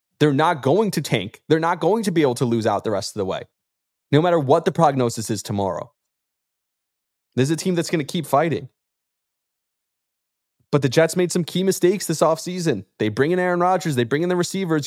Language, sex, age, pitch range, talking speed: English, male, 20-39, 115-165 Hz, 220 wpm